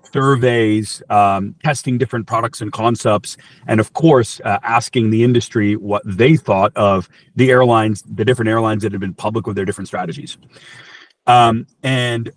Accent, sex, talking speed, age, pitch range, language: American, male, 160 wpm, 40-59, 110-140 Hz, English